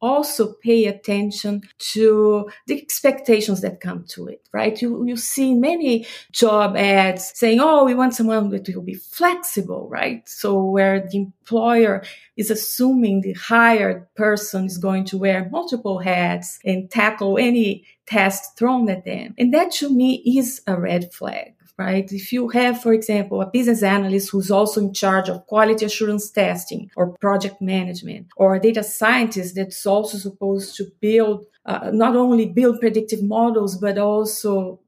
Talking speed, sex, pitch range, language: 160 wpm, female, 195-235 Hz, English